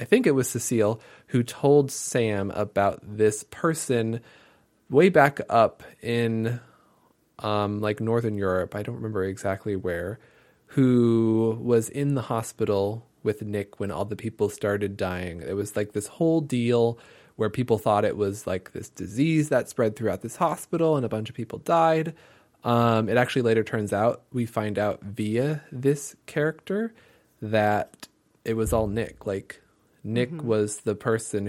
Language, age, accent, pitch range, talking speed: English, 20-39, American, 105-130 Hz, 160 wpm